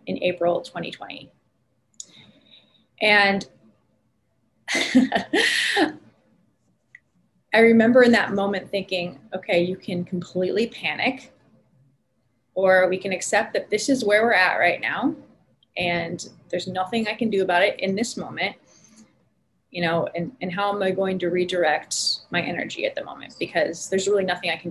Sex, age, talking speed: female, 20-39, 145 wpm